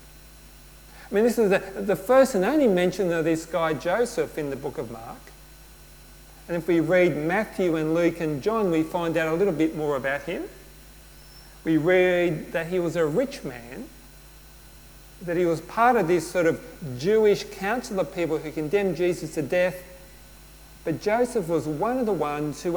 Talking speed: 180 wpm